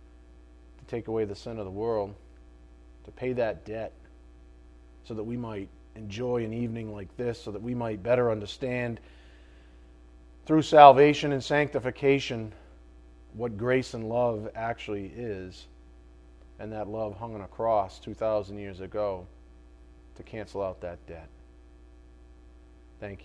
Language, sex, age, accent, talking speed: English, male, 30-49, American, 135 wpm